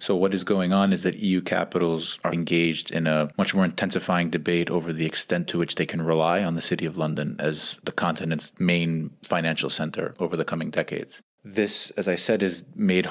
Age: 30-49